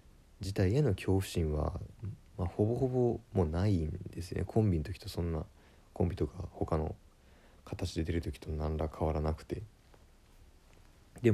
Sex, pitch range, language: male, 80-115 Hz, Japanese